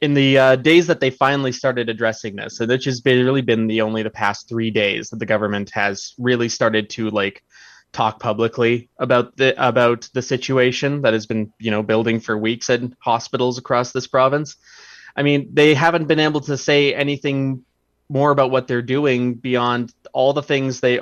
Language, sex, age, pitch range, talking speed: English, male, 20-39, 110-130 Hz, 195 wpm